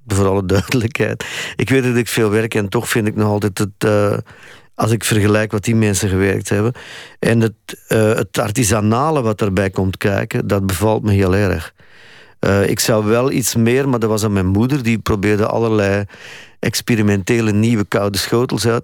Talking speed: 190 wpm